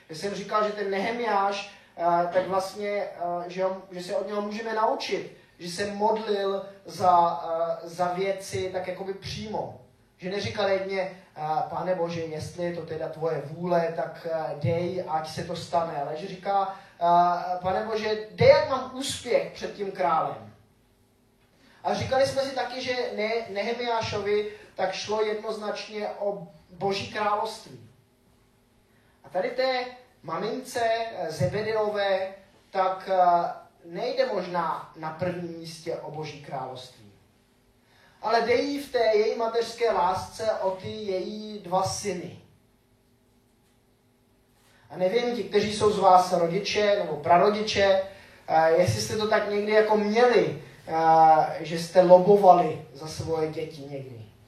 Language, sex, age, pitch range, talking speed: Czech, male, 20-39, 155-210 Hz, 130 wpm